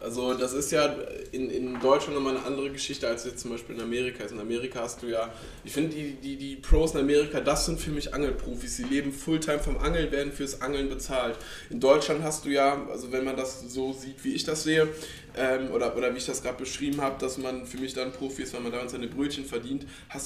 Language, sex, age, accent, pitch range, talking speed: German, male, 20-39, German, 120-140 Hz, 250 wpm